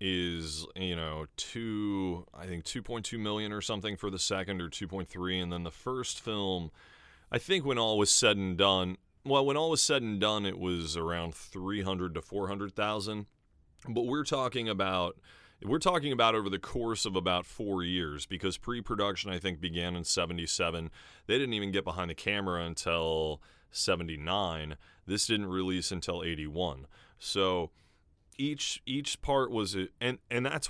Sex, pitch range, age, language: male, 85-110 Hz, 30-49, English